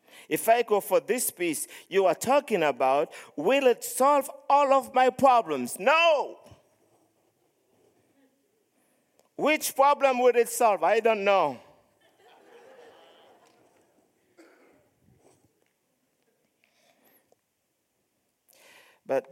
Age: 50-69